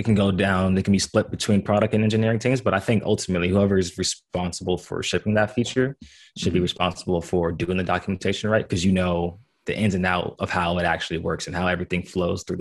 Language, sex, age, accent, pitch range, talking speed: English, male, 20-39, American, 90-105 Hz, 235 wpm